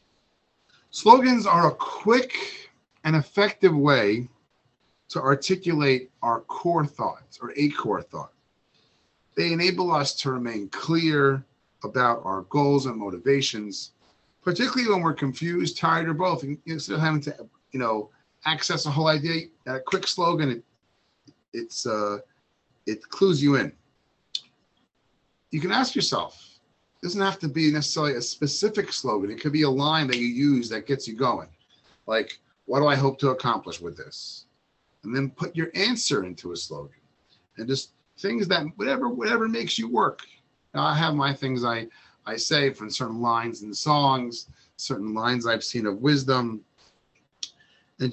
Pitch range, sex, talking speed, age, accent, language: 125-170 Hz, male, 160 wpm, 40-59, American, English